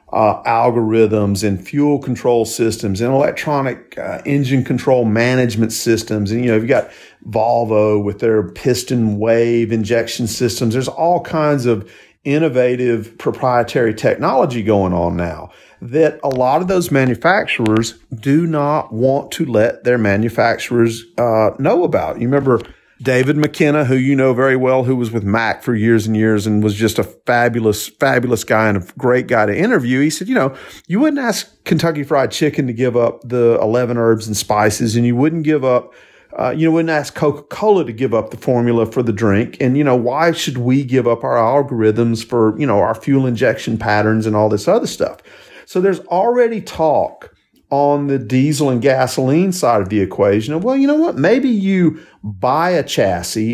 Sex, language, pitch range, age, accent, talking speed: male, English, 115-150 Hz, 40-59, American, 185 wpm